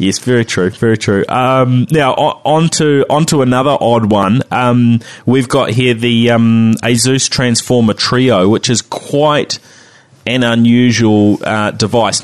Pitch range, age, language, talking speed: 110-130 Hz, 20-39, English, 145 wpm